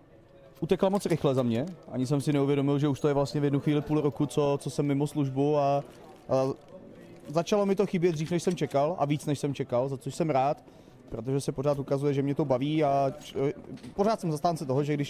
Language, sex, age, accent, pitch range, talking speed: Czech, male, 30-49, native, 140-160 Hz, 235 wpm